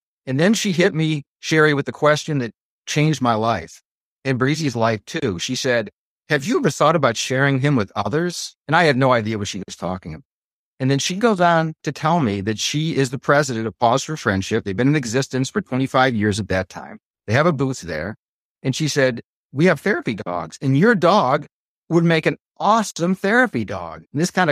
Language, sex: English, male